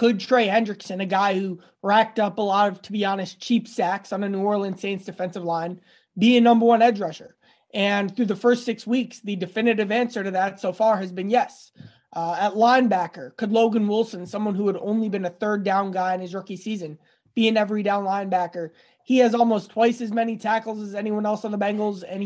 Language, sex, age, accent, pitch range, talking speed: English, male, 20-39, American, 190-225 Hz, 225 wpm